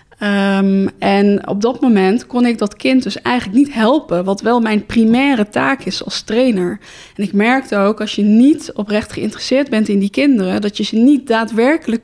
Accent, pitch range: Dutch, 205-245 Hz